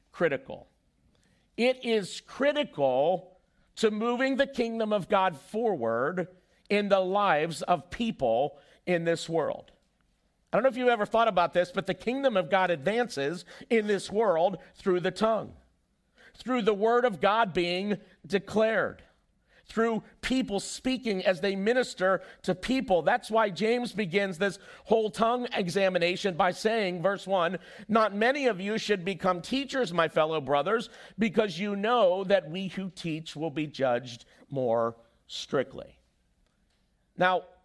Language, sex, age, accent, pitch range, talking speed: English, male, 50-69, American, 145-220 Hz, 145 wpm